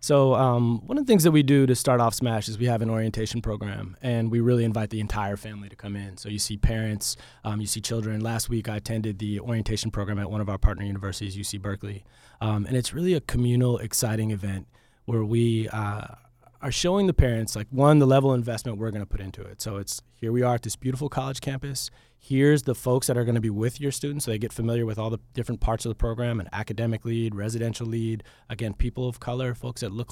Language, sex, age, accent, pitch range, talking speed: English, male, 20-39, American, 110-125 Hz, 240 wpm